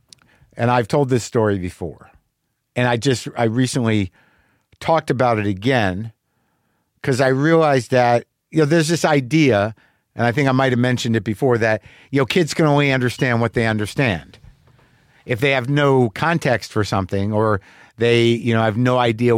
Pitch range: 115-145 Hz